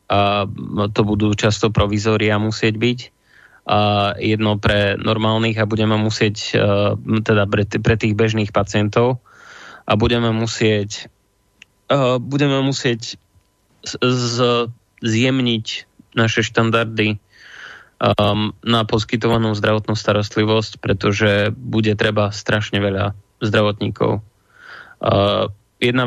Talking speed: 100 wpm